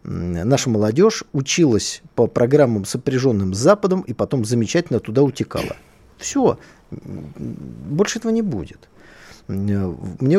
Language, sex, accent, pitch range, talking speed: Russian, male, native, 110-150 Hz, 110 wpm